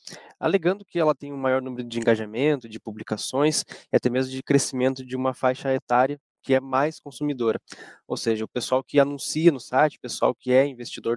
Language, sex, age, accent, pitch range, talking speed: Portuguese, male, 20-39, Brazilian, 115-140 Hz, 200 wpm